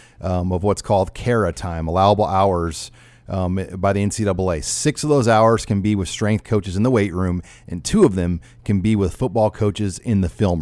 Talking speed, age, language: 210 wpm, 40-59, English